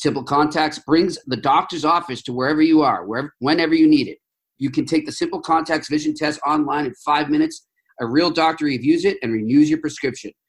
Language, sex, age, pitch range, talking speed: English, male, 40-59, 135-215 Hz, 205 wpm